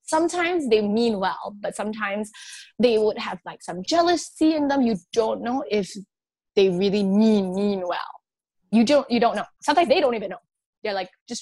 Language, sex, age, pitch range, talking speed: English, female, 20-39, 185-240 Hz, 190 wpm